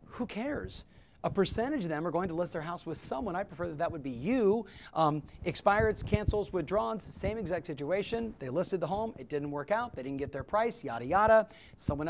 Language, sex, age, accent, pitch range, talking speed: English, male, 40-59, American, 150-200 Hz, 220 wpm